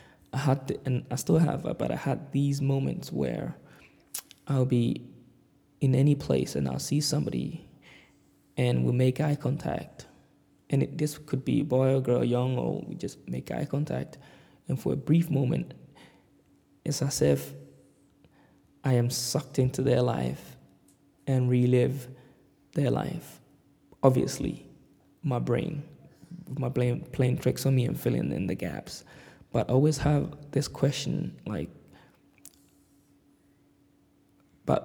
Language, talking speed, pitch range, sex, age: English, 140 wpm, 125-145 Hz, male, 20-39